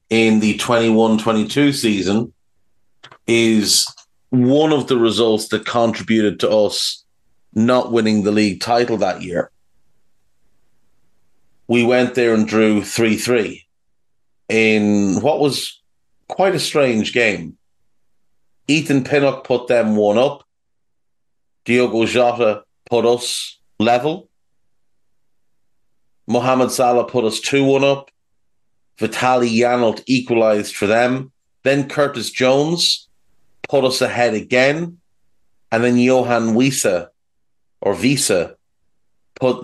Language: English